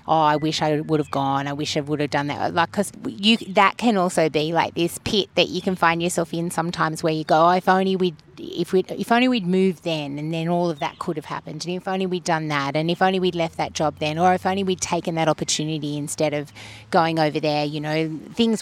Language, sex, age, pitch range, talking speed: English, female, 30-49, 160-195 Hz, 265 wpm